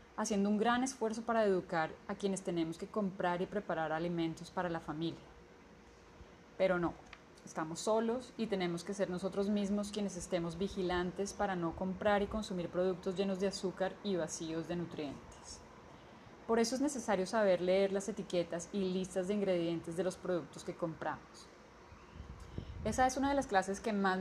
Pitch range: 175-215 Hz